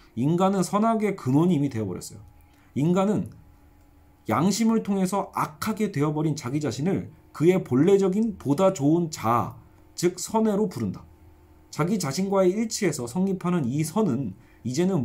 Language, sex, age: Korean, male, 40-59